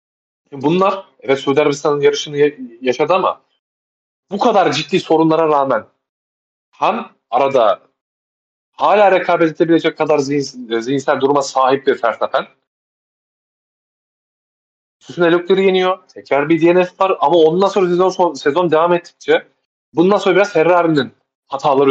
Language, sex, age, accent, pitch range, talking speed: Turkish, male, 30-49, native, 125-160 Hz, 120 wpm